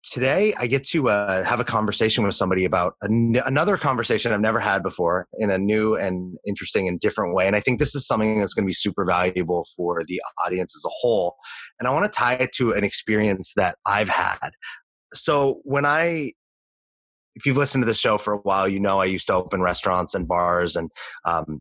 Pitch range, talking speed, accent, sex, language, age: 95-125 Hz, 215 wpm, American, male, English, 30-49